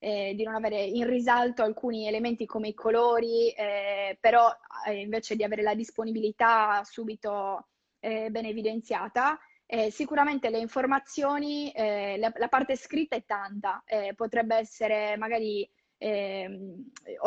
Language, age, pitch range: Italian, 20-39, 210-240 Hz